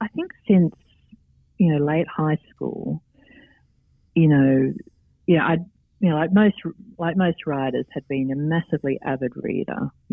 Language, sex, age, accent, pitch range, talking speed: English, female, 50-69, Australian, 135-175 Hz, 165 wpm